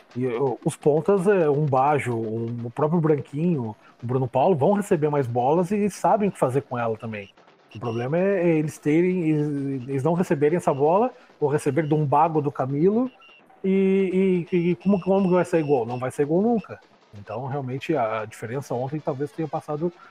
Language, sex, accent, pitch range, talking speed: Portuguese, male, Brazilian, 125-170 Hz, 190 wpm